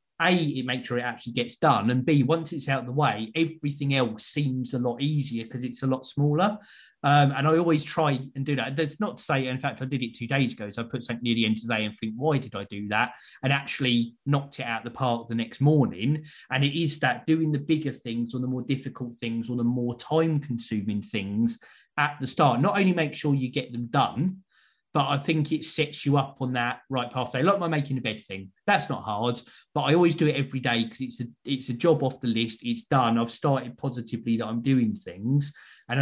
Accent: British